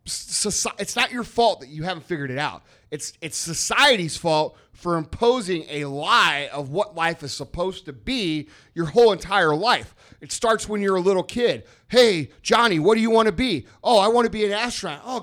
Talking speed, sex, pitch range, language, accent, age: 210 wpm, male, 160-230 Hz, English, American, 30-49